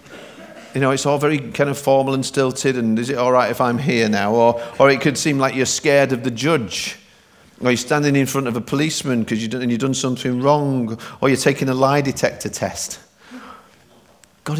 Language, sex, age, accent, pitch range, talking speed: English, male, 50-69, British, 120-155 Hz, 215 wpm